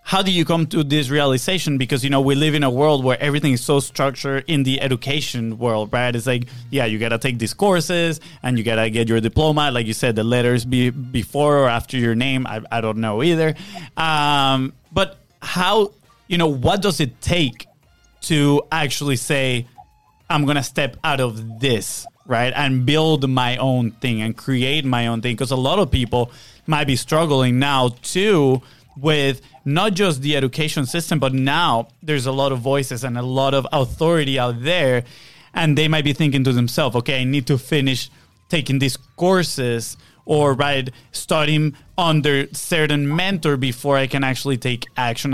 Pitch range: 125-150 Hz